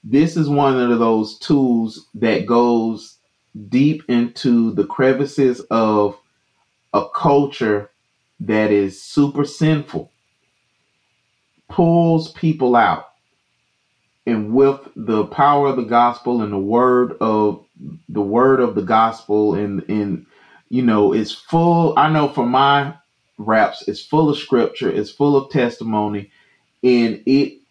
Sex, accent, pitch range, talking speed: male, American, 110-140 Hz, 130 wpm